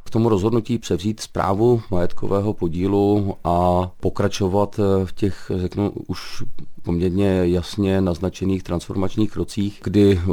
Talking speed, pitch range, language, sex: 110 wpm, 90-100 Hz, Czech, male